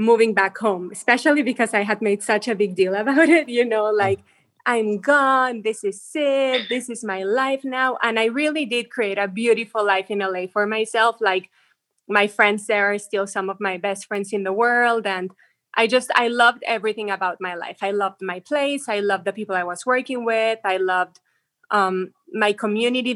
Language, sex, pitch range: English, female, 195-230 Hz